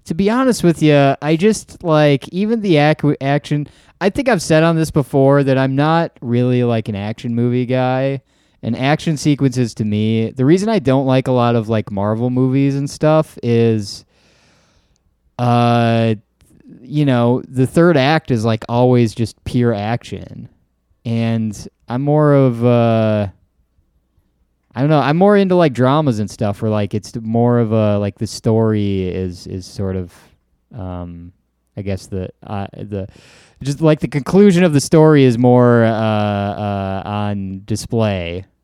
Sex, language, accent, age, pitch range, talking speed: male, English, American, 20-39, 105-145 Hz, 165 wpm